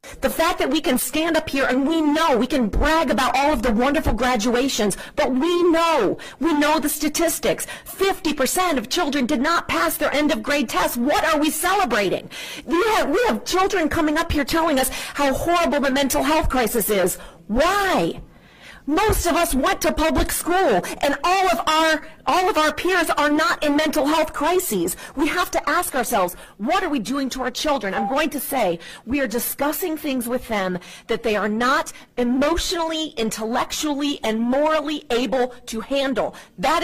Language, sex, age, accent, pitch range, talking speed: English, female, 40-59, American, 245-315 Hz, 185 wpm